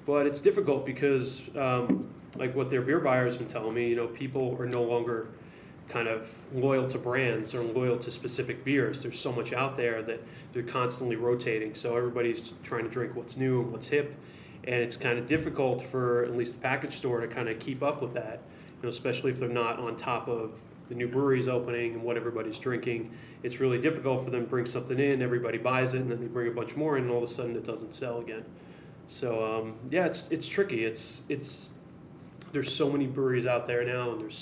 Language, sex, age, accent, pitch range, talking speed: English, male, 20-39, American, 120-135 Hz, 225 wpm